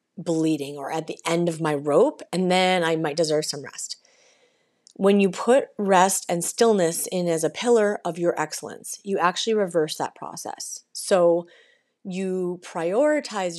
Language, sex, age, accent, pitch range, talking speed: English, female, 30-49, American, 160-200 Hz, 160 wpm